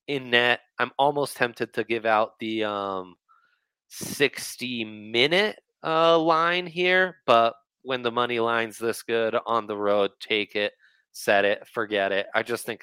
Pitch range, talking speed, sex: 105-130 Hz, 155 wpm, male